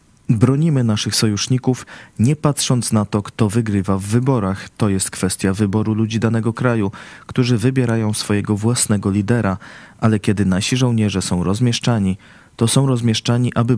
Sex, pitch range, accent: male, 105-125 Hz, native